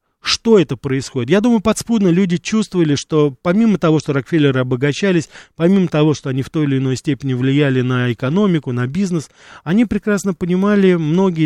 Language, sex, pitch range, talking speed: Russian, male, 130-165 Hz, 170 wpm